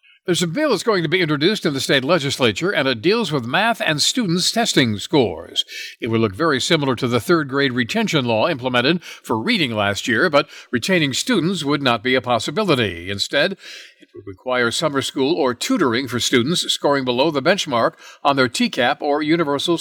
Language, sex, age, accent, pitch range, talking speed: English, male, 60-79, American, 125-170 Hz, 190 wpm